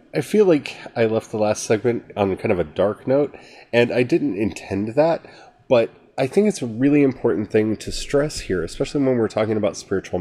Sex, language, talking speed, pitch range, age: male, English, 210 wpm, 100-135 Hz, 30-49